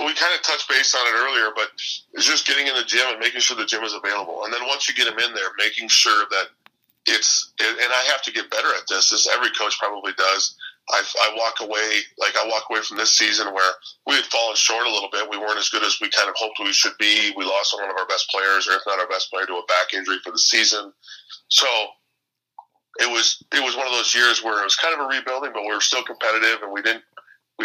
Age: 40-59